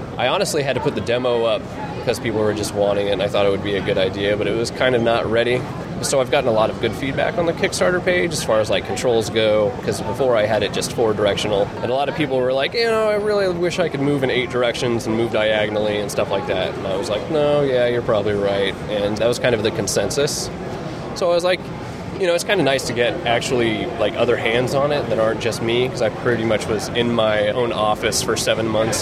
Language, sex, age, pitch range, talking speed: English, male, 20-39, 110-135 Hz, 270 wpm